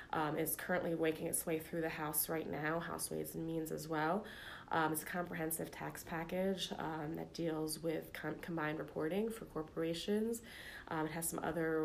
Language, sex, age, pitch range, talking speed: English, female, 20-39, 155-175 Hz, 185 wpm